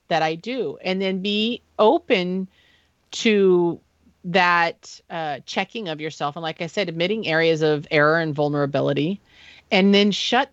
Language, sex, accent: English, female, American